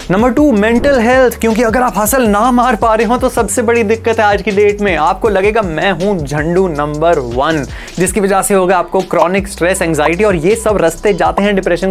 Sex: male